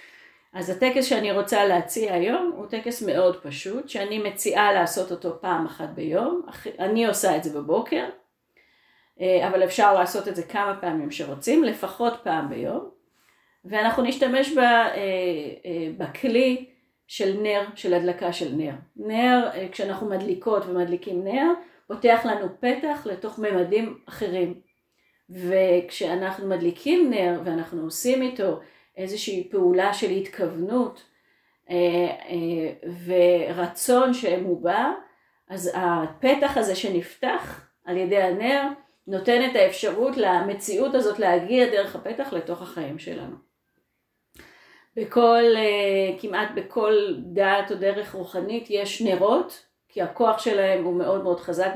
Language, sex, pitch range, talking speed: Hebrew, female, 180-230 Hz, 115 wpm